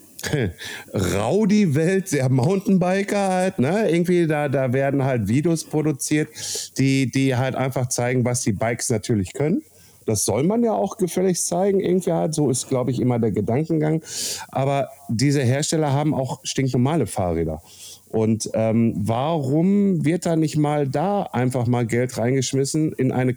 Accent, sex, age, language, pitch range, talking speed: German, male, 50-69, German, 125-170 Hz, 155 wpm